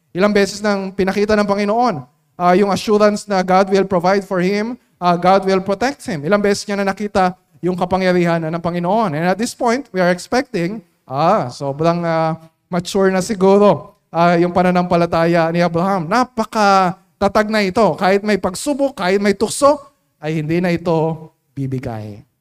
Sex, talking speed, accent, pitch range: male, 170 wpm, native, 160-200 Hz